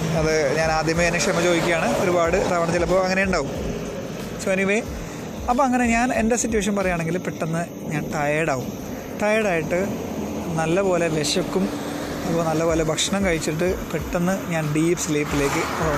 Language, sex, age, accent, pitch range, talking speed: Malayalam, male, 30-49, native, 160-205 Hz, 125 wpm